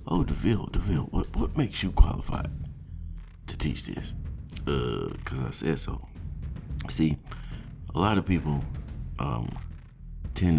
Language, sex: English, male